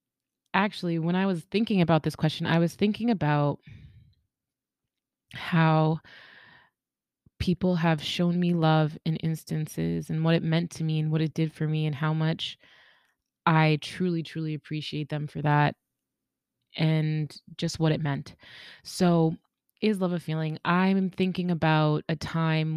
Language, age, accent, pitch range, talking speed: English, 20-39, American, 155-185 Hz, 150 wpm